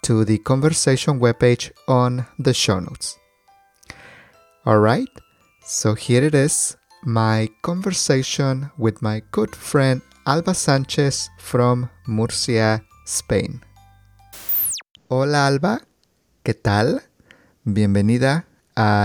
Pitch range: 105-130 Hz